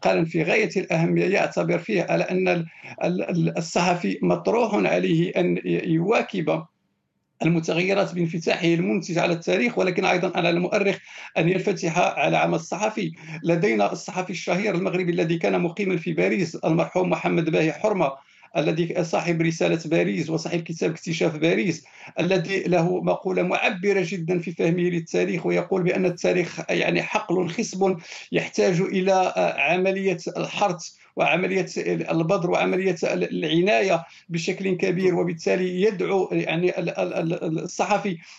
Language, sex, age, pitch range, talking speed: Arabic, male, 50-69, 170-190 Hz, 120 wpm